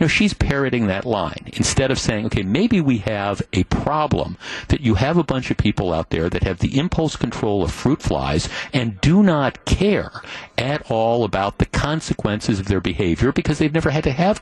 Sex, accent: male, American